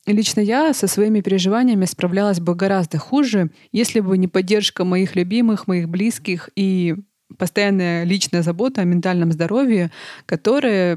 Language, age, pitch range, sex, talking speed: Russian, 20-39, 175-220 Hz, female, 135 wpm